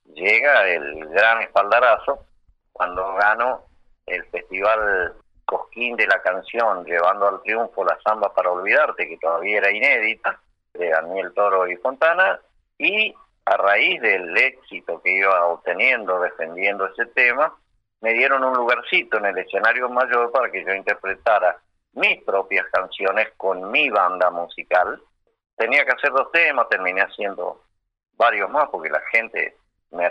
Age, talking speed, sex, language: 50-69, 140 wpm, male, Spanish